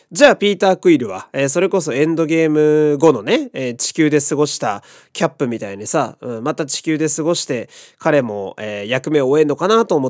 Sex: male